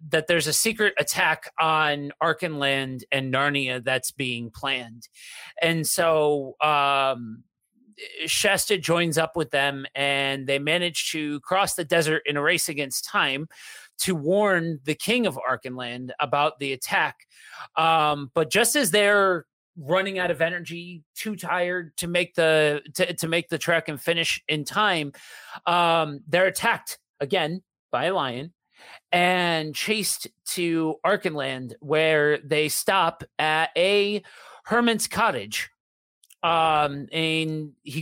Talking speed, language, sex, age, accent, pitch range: 135 wpm, English, male, 30-49, American, 145-180 Hz